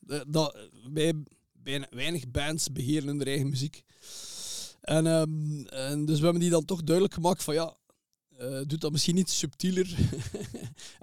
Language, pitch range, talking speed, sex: English, 135-170 Hz, 145 wpm, male